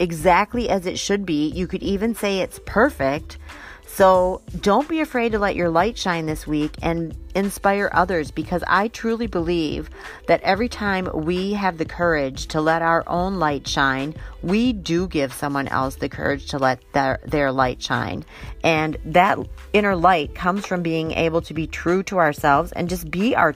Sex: female